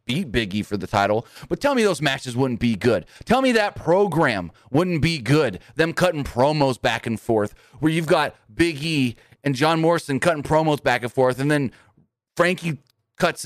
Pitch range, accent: 115-160 Hz, American